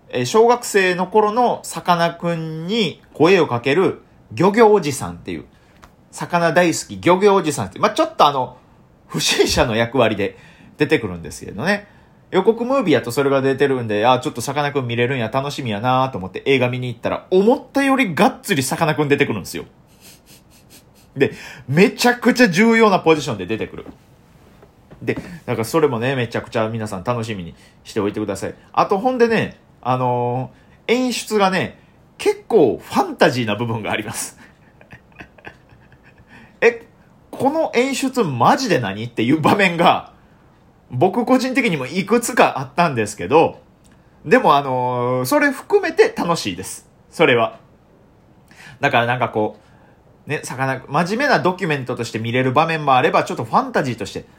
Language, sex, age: Japanese, male, 40-59